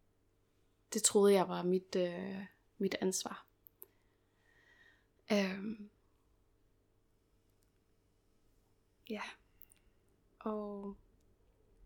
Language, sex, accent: Danish, female, native